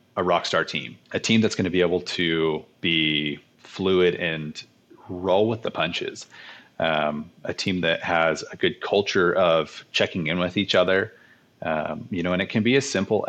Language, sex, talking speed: English, male, 185 wpm